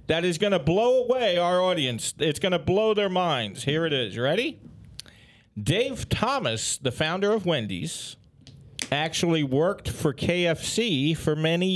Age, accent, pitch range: 40-59, American, 120-170 Hz